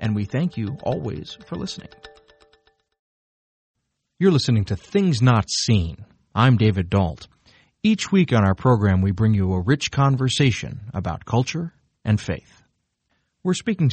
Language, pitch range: English, 105-145 Hz